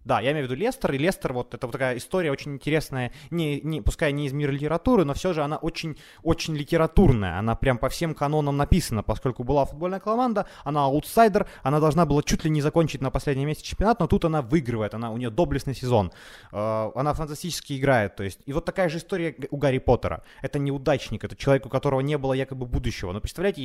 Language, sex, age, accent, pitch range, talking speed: Ukrainian, male, 20-39, native, 120-155 Hz, 220 wpm